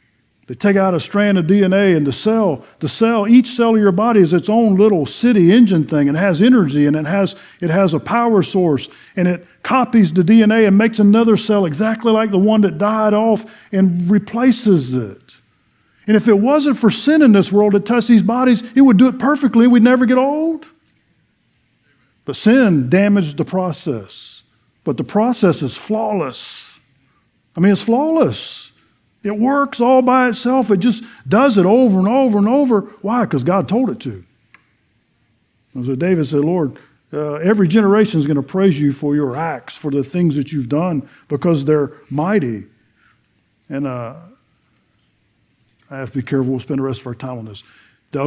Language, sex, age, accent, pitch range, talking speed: English, male, 50-69, American, 140-220 Hz, 190 wpm